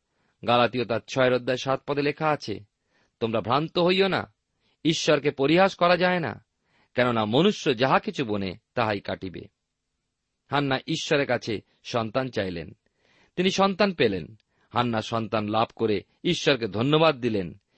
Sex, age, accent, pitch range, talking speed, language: male, 40-59, native, 110-160 Hz, 130 wpm, Bengali